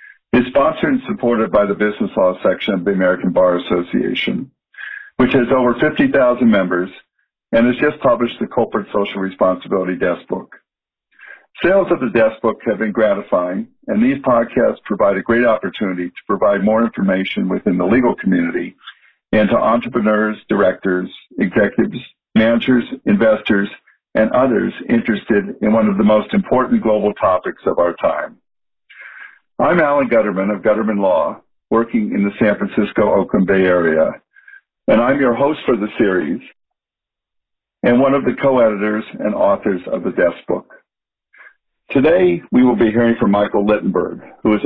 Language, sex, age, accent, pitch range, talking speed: English, male, 50-69, American, 100-130 Hz, 150 wpm